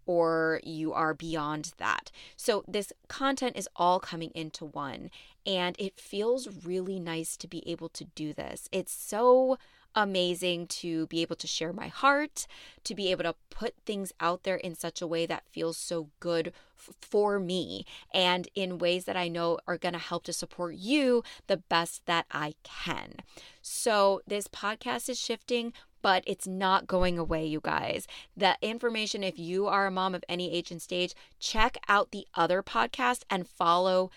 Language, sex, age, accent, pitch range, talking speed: English, female, 20-39, American, 165-200 Hz, 175 wpm